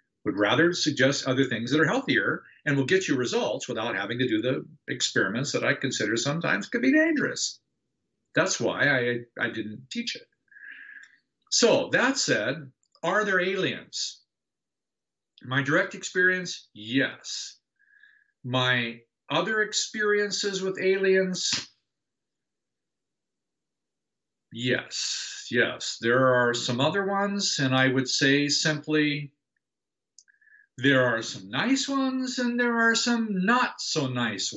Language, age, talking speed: English, 50-69, 125 wpm